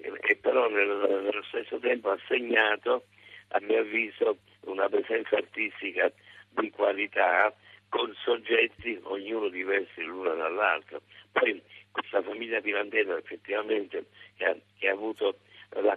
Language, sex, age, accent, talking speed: Italian, male, 60-79, native, 120 wpm